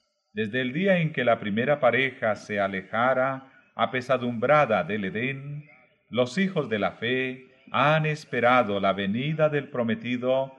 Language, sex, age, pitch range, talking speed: Spanish, male, 40-59, 120-150 Hz, 135 wpm